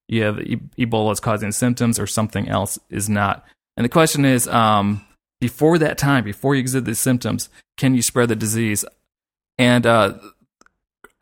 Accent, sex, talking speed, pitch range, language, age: American, male, 160 wpm, 110-130 Hz, English, 20-39